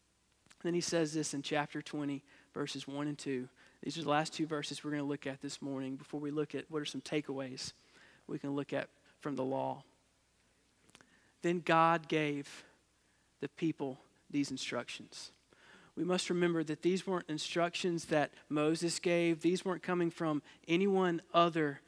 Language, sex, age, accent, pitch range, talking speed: English, male, 40-59, American, 150-195 Hz, 170 wpm